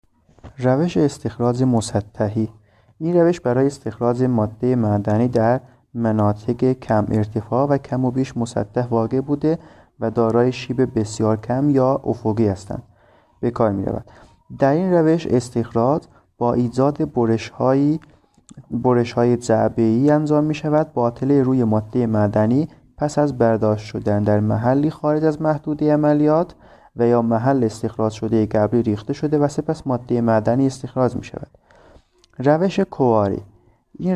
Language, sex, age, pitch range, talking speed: Persian, male, 30-49, 110-140 Hz, 130 wpm